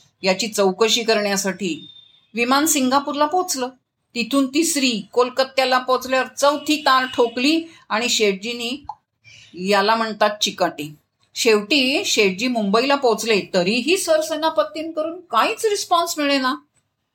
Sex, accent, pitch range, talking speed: female, native, 200-265 Hz, 100 wpm